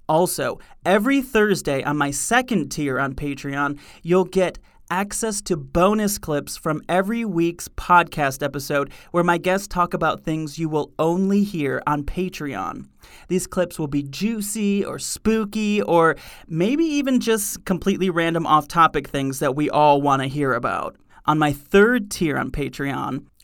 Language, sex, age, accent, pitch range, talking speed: English, male, 30-49, American, 145-205 Hz, 150 wpm